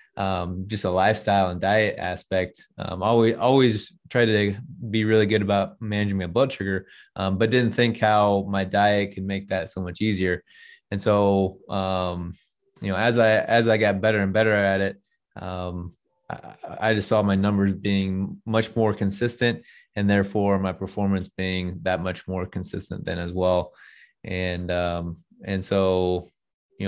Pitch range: 95-110 Hz